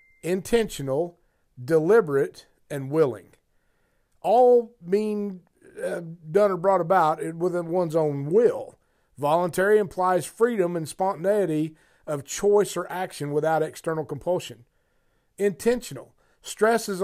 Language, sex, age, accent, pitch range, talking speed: English, male, 50-69, American, 145-190 Hz, 100 wpm